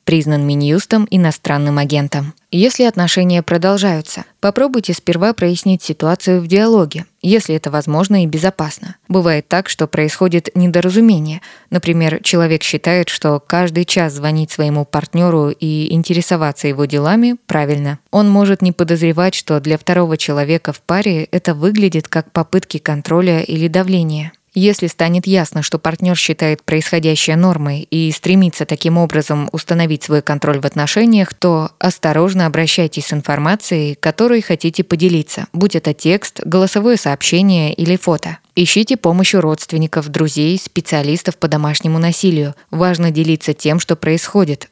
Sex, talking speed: female, 135 wpm